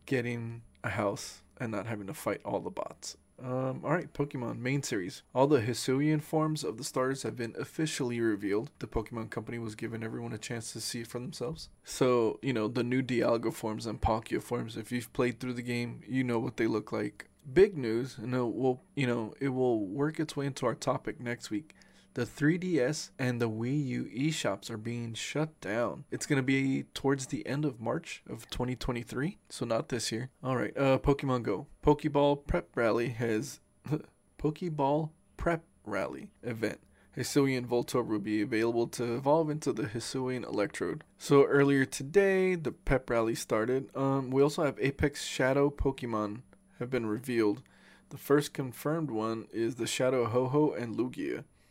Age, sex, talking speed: 20-39, male, 180 wpm